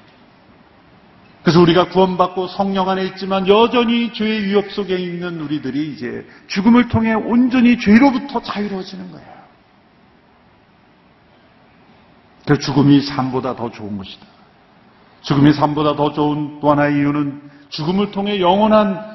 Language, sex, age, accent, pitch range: Korean, male, 40-59, native, 135-200 Hz